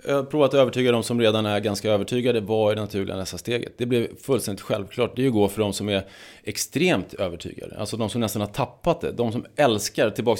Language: English